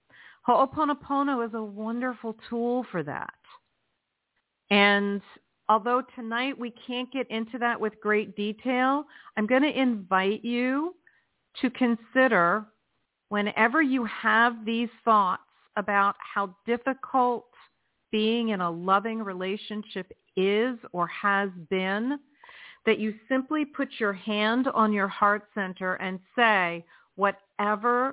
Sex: female